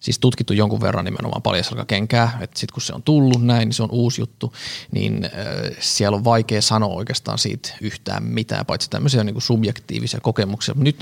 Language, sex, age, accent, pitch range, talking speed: Finnish, male, 20-39, native, 110-130 Hz, 185 wpm